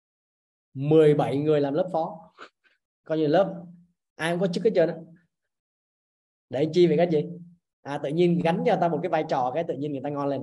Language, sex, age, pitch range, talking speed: Vietnamese, male, 20-39, 140-185 Hz, 215 wpm